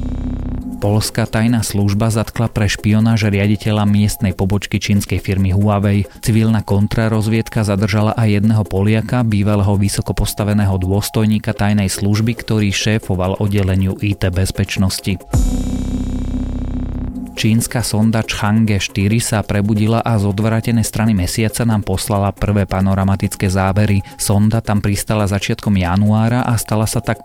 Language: Slovak